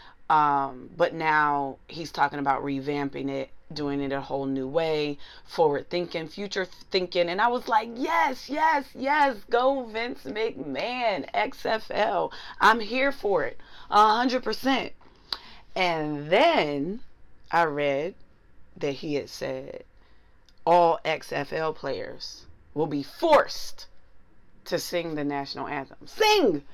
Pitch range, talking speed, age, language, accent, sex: 145-235 Hz, 125 wpm, 30-49, English, American, female